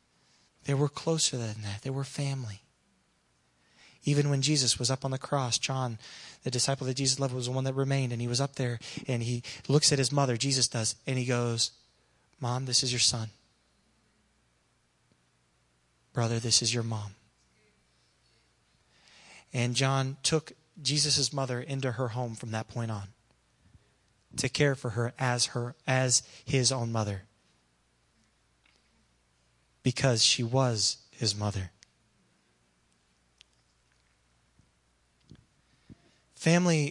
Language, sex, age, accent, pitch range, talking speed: English, male, 20-39, American, 100-135 Hz, 130 wpm